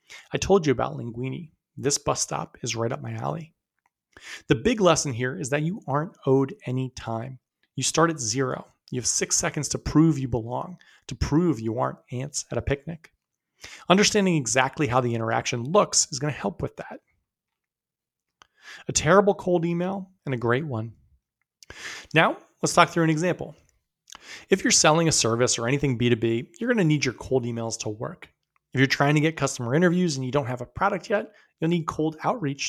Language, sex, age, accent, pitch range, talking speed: English, male, 30-49, American, 125-165 Hz, 195 wpm